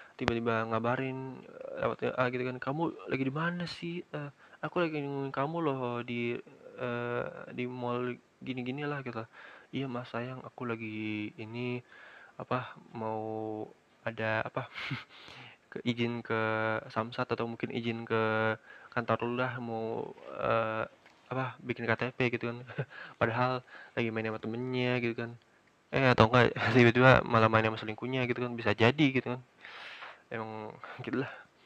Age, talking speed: 20-39, 130 wpm